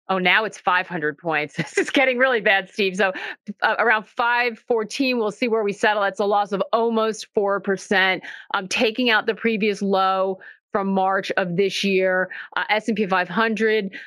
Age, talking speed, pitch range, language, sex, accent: 40-59, 170 wpm, 180-220 Hz, English, female, American